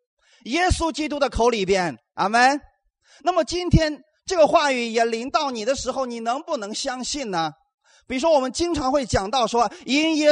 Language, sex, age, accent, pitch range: Chinese, male, 30-49, native, 215-300 Hz